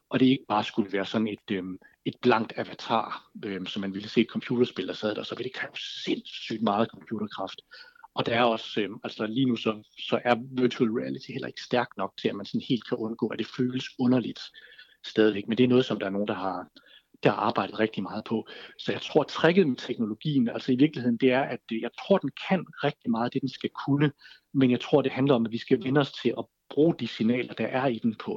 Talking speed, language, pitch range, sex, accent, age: 245 wpm, Danish, 110-130 Hz, male, native, 60-79